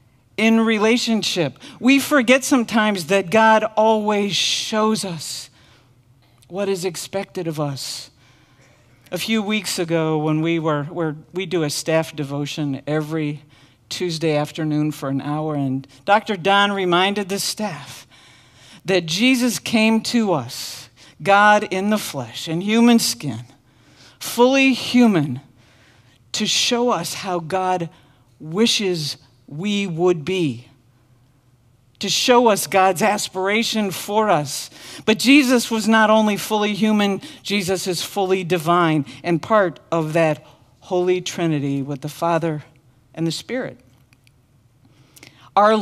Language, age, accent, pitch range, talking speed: English, 50-69, American, 130-205 Hz, 120 wpm